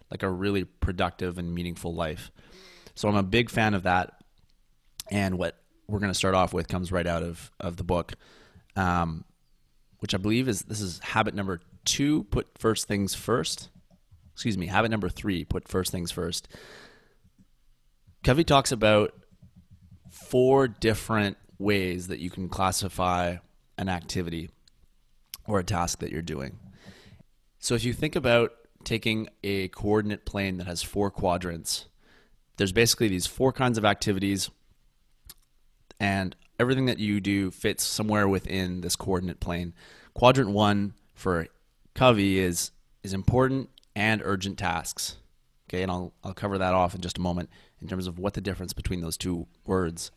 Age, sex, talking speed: 20-39, male, 160 wpm